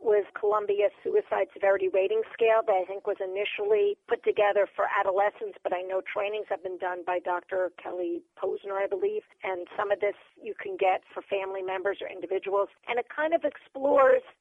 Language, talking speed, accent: English, 185 wpm, American